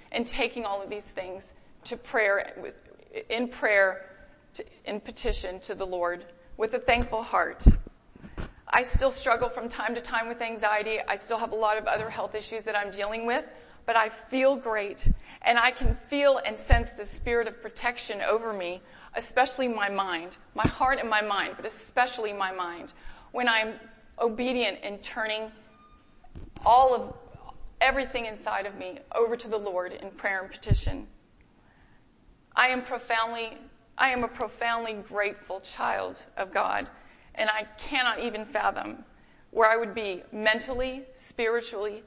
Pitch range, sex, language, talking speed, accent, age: 210-245 Hz, female, English, 160 wpm, American, 40-59